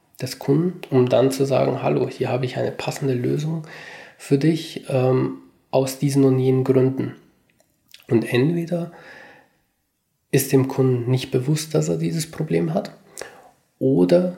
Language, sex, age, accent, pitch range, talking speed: German, male, 20-39, German, 120-135 Hz, 140 wpm